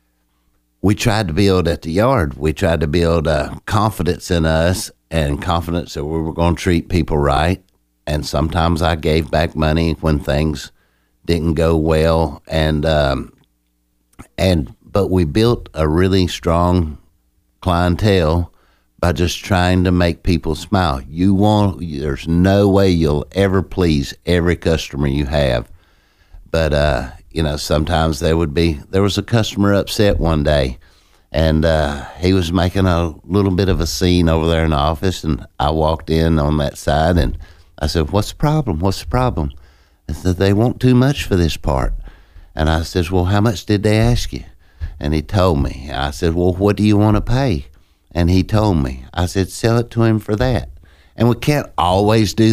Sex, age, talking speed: male, 60-79, 185 wpm